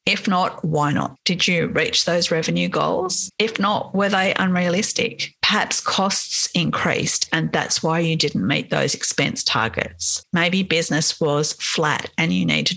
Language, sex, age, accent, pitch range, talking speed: English, female, 40-59, Australian, 155-200 Hz, 165 wpm